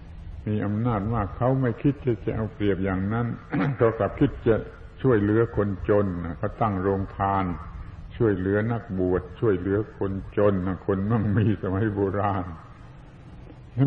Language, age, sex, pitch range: Thai, 70-89, male, 95-115 Hz